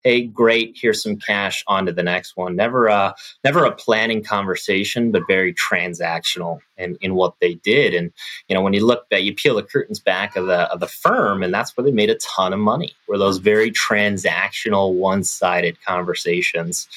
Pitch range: 90-105 Hz